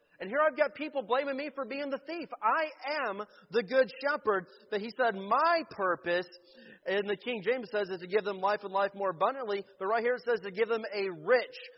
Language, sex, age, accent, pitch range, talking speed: English, male, 30-49, American, 195-260 Hz, 230 wpm